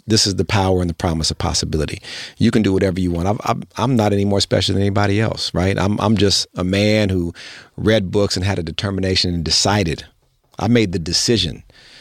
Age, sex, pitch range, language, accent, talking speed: 40-59, male, 85-105 Hz, English, American, 215 wpm